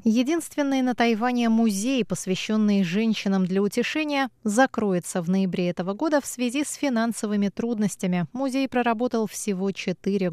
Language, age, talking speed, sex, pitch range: Russian, 20-39, 130 wpm, female, 190-240 Hz